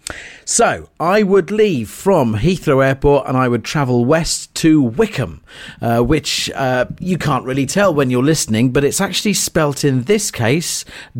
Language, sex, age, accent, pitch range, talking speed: English, male, 40-59, British, 130-185 Hz, 165 wpm